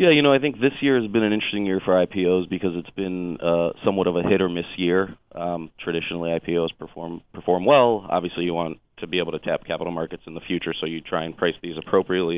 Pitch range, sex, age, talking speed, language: 85-95 Hz, male, 30-49, 245 wpm, English